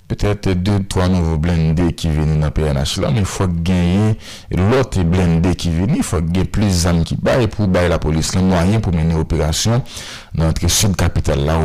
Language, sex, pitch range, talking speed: French, male, 80-95 Hz, 200 wpm